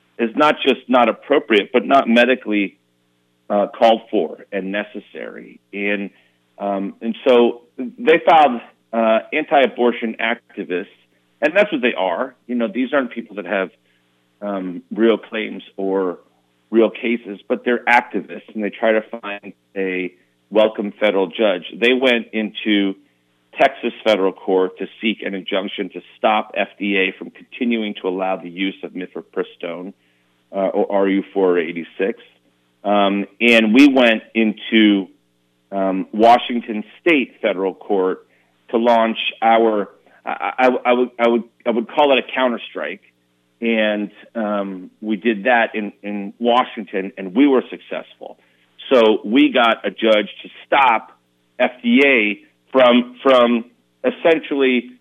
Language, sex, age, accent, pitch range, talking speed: English, male, 40-59, American, 95-120 Hz, 140 wpm